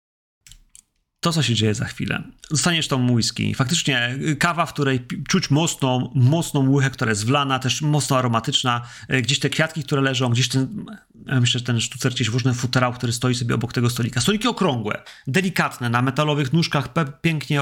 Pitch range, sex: 120-150 Hz, male